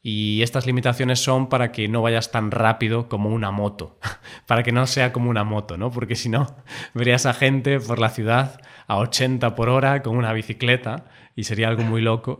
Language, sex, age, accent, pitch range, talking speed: Spanish, male, 20-39, Spanish, 105-125 Hz, 205 wpm